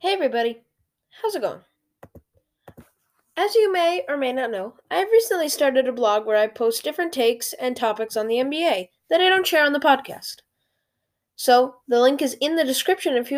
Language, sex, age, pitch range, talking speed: English, female, 10-29, 225-320 Hz, 195 wpm